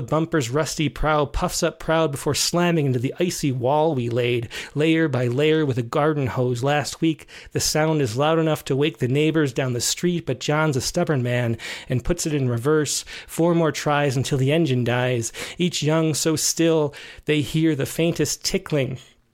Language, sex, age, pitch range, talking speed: English, male, 30-49, 135-160 Hz, 190 wpm